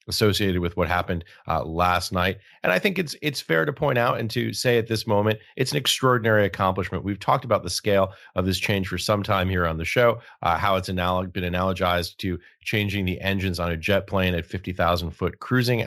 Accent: American